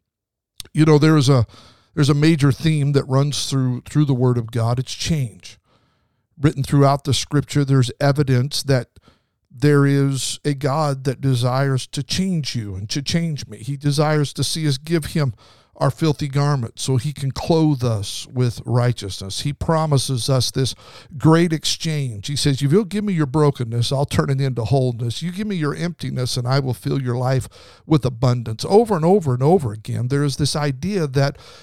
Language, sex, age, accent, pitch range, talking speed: English, male, 50-69, American, 120-150 Hz, 185 wpm